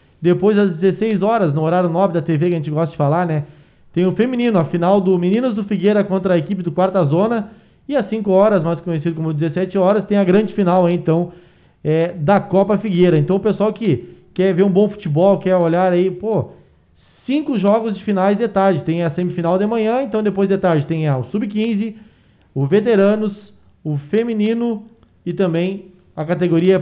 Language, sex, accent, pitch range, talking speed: Portuguese, male, Brazilian, 175-205 Hz, 195 wpm